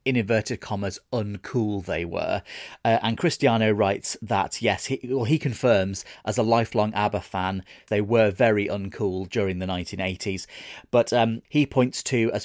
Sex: male